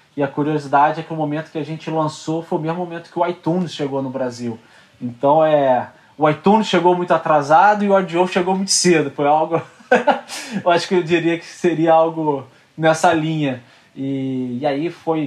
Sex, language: male, Portuguese